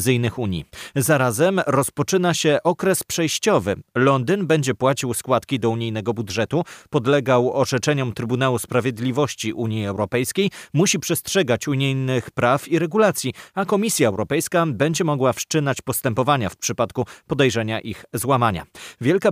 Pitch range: 115-150 Hz